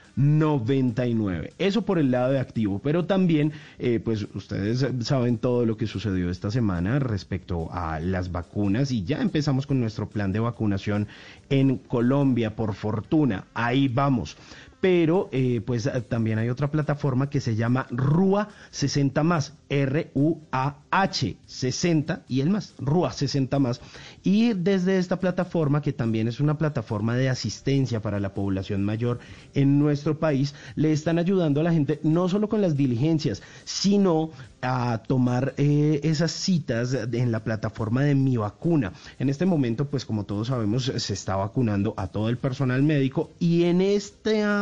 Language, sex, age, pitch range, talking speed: Spanish, male, 40-59, 115-155 Hz, 155 wpm